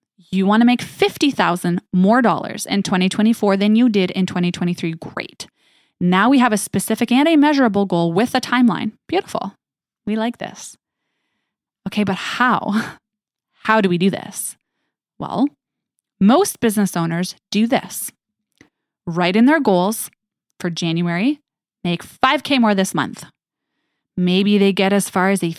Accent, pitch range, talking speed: American, 180-235 Hz, 150 wpm